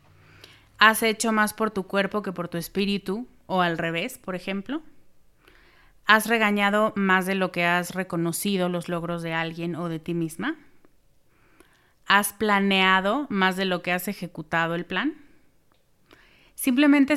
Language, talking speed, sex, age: Spanish, 145 wpm, female, 30-49